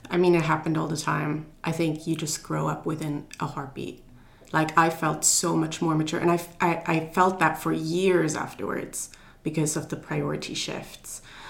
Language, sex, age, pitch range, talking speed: English, female, 20-39, 150-170 Hz, 195 wpm